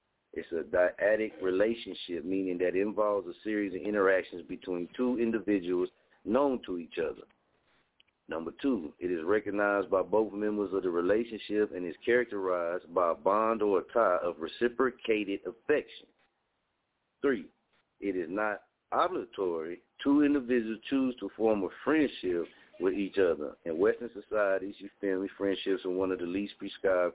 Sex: male